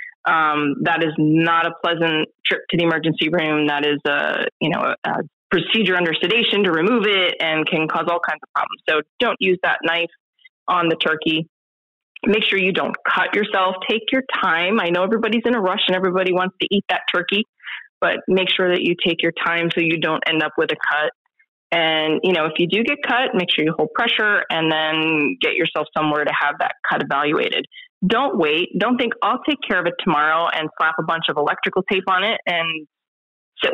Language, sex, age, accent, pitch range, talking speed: English, female, 20-39, American, 160-205 Hz, 215 wpm